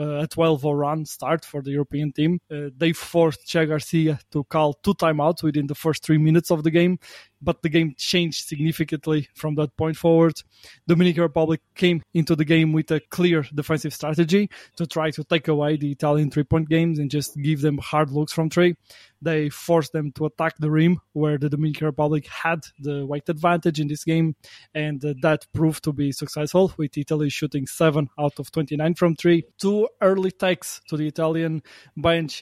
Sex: male